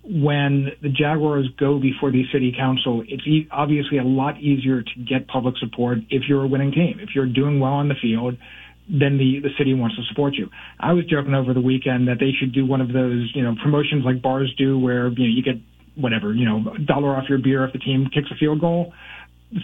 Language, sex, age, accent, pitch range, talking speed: English, male, 40-59, American, 120-150 Hz, 240 wpm